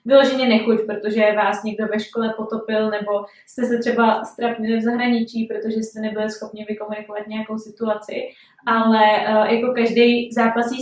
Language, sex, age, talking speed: Czech, female, 20-39, 145 wpm